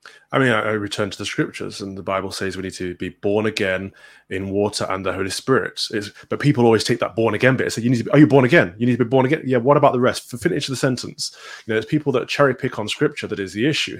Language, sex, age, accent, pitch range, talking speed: English, male, 20-39, British, 105-130 Hz, 285 wpm